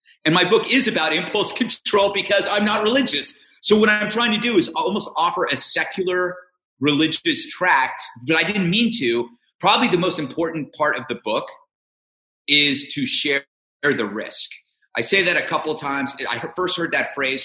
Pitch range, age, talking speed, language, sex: 135-210 Hz, 30-49, 185 wpm, English, male